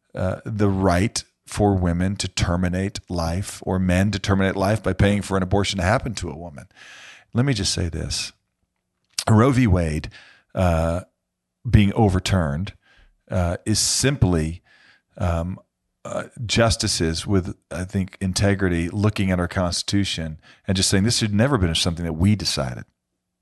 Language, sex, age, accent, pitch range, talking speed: English, male, 40-59, American, 90-115 Hz, 155 wpm